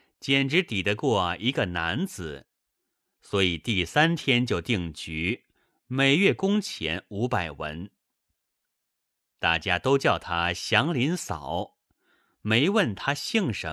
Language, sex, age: Chinese, male, 30-49